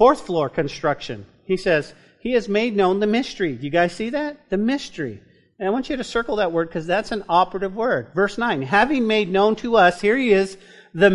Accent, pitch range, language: American, 170-220 Hz, English